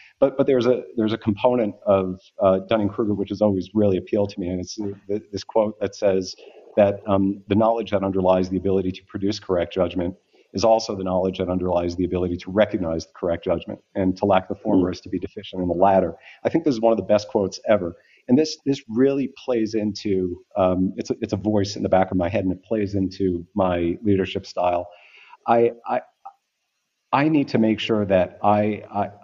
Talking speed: 220 wpm